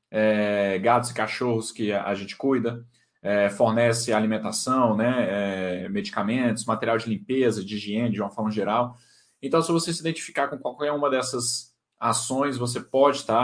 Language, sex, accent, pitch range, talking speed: Portuguese, male, Brazilian, 110-140 Hz, 160 wpm